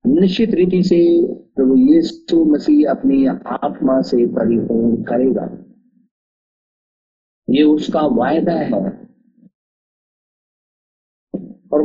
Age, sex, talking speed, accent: 50-69, male, 85 wpm, native